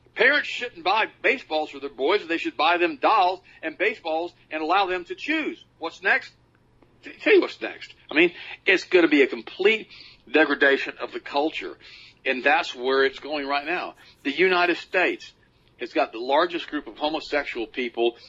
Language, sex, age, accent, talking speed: English, male, 50-69, American, 180 wpm